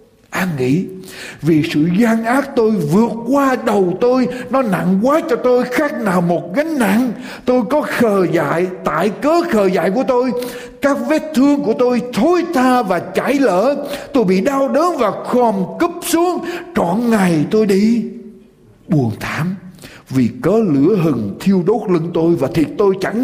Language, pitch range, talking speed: Vietnamese, 190-275 Hz, 175 wpm